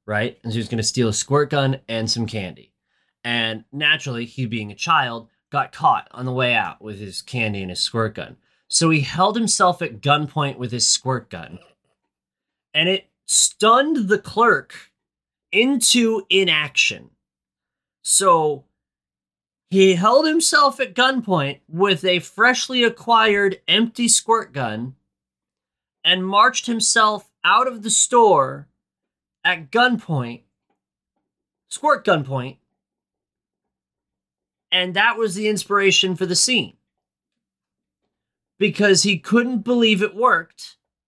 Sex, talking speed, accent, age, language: male, 125 wpm, American, 30-49, English